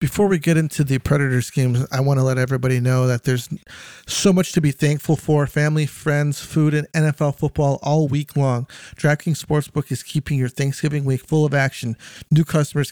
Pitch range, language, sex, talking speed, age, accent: 130-155 Hz, English, male, 195 wpm, 40-59, American